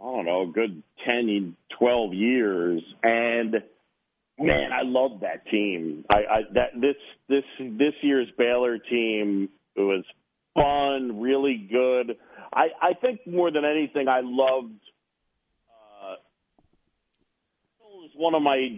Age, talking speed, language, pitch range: 40-59, 130 wpm, English, 110-140 Hz